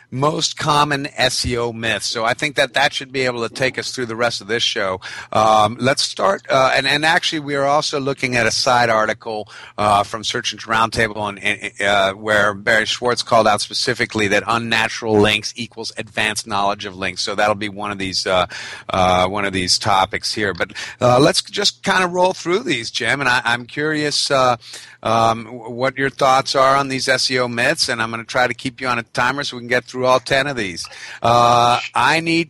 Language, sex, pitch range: English, male, 110-135 Hz